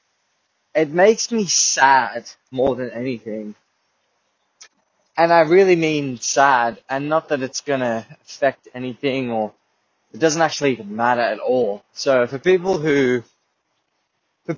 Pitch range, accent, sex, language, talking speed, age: 115-145 Hz, Australian, male, English, 130 wpm, 20-39